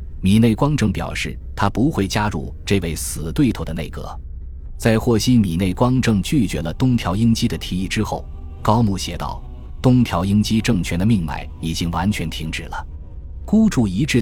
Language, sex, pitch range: Chinese, male, 80-110 Hz